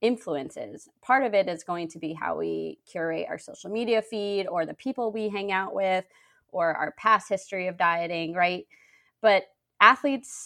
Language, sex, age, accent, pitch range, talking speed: English, female, 20-39, American, 165-205 Hz, 180 wpm